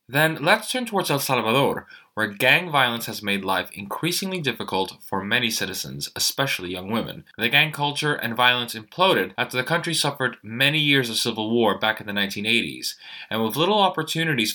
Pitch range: 110-150 Hz